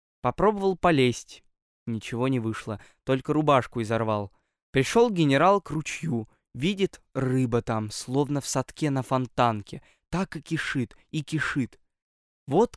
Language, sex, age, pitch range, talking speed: Russian, male, 20-39, 120-165 Hz, 120 wpm